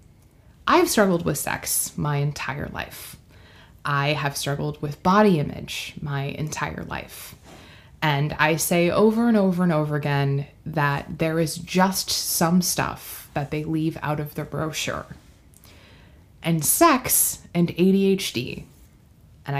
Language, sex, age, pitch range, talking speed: English, female, 20-39, 145-175 Hz, 130 wpm